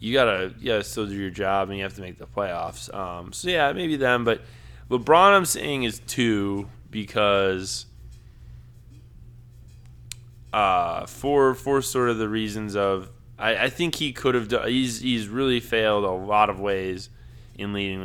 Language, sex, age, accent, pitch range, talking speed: English, male, 20-39, American, 95-120 Hz, 170 wpm